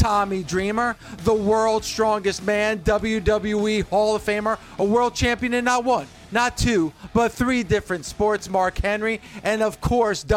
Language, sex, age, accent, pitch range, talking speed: English, male, 40-59, American, 200-235 Hz, 155 wpm